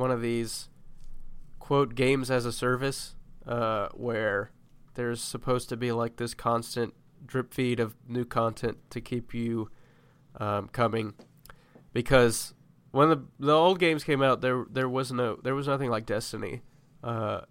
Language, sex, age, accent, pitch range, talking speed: English, male, 20-39, American, 115-145 Hz, 155 wpm